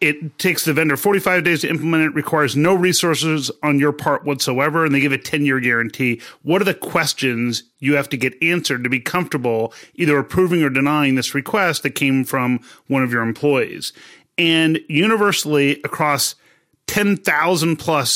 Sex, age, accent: male, 30-49, American